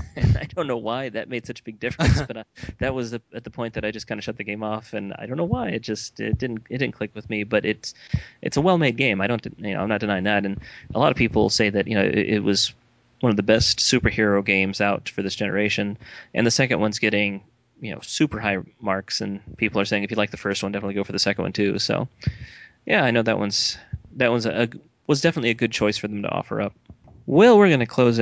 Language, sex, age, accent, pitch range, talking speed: English, male, 20-39, American, 105-130 Hz, 275 wpm